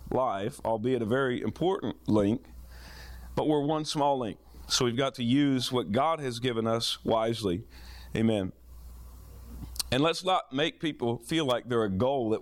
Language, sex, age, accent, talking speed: English, male, 40-59, American, 165 wpm